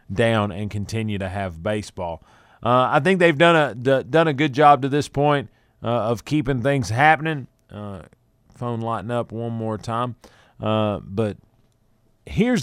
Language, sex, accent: English, male, American